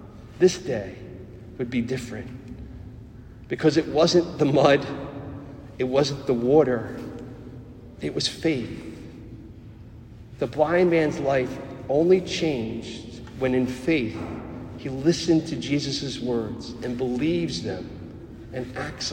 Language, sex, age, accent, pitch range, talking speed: English, male, 40-59, American, 115-155 Hz, 115 wpm